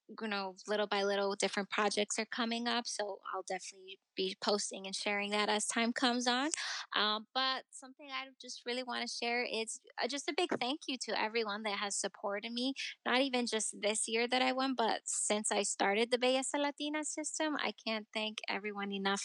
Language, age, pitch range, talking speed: English, 10-29, 205-250 Hz, 200 wpm